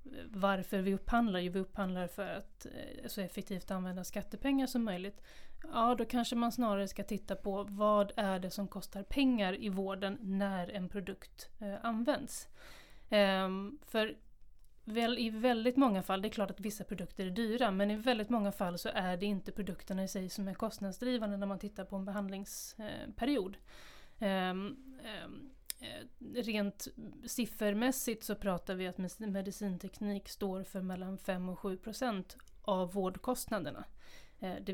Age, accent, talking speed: 30-49, native, 145 wpm